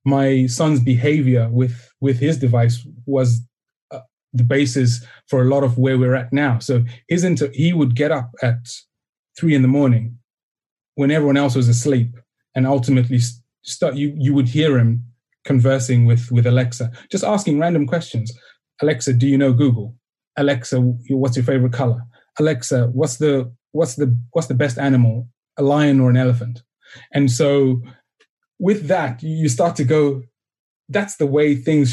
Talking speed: 165 wpm